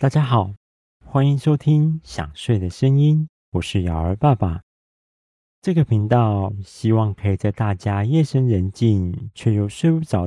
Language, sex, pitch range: Chinese, male, 90-125 Hz